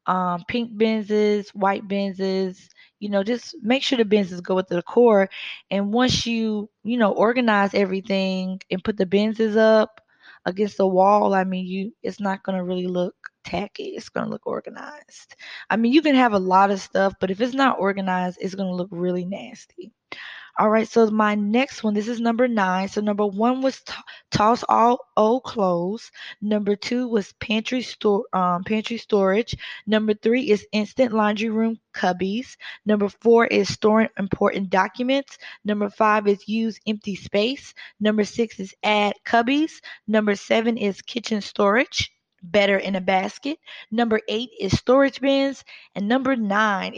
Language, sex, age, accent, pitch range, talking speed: English, female, 20-39, American, 195-235 Hz, 170 wpm